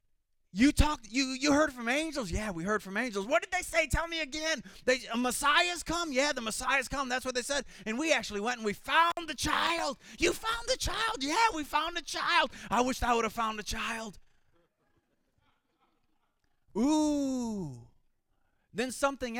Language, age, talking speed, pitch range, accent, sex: English, 30-49, 185 wpm, 185-280 Hz, American, male